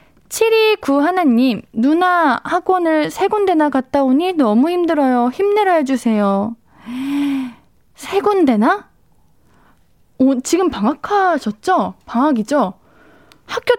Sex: female